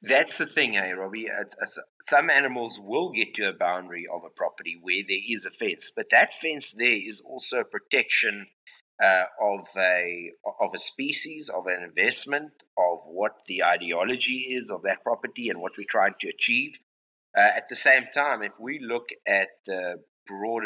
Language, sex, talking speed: English, male, 185 wpm